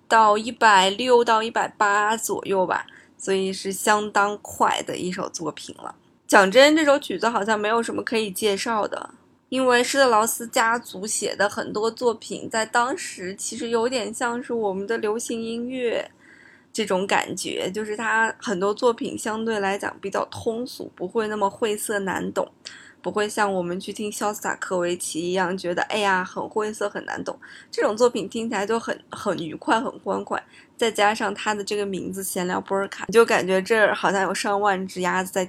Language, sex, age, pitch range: Chinese, female, 20-39, 195-235 Hz